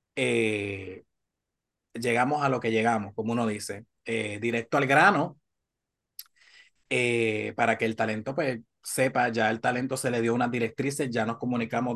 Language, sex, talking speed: Spanish, male, 155 wpm